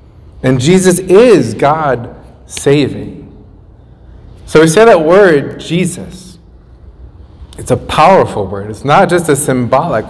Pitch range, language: 115-150 Hz, English